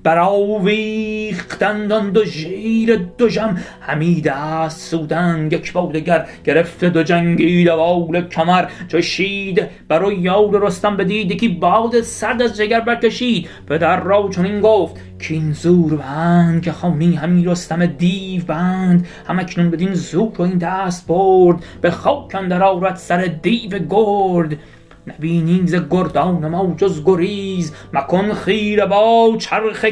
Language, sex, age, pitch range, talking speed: Persian, male, 30-49, 165-215 Hz, 135 wpm